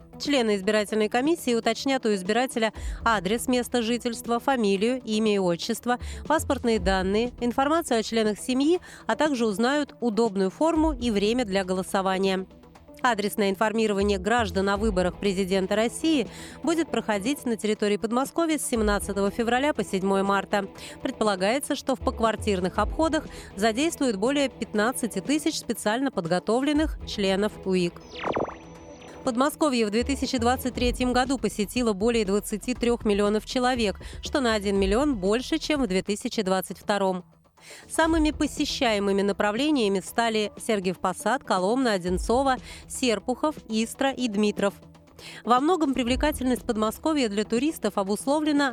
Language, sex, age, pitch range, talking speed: Russian, female, 30-49, 205-255 Hz, 115 wpm